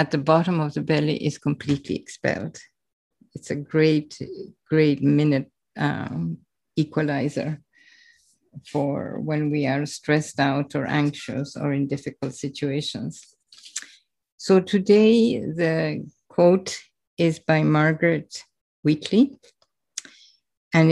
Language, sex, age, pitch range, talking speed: English, female, 50-69, 145-175 Hz, 105 wpm